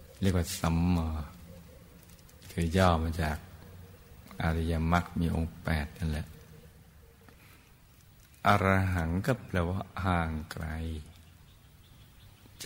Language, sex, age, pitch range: Thai, male, 60-79, 80-90 Hz